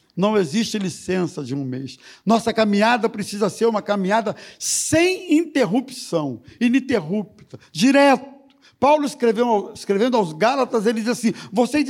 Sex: male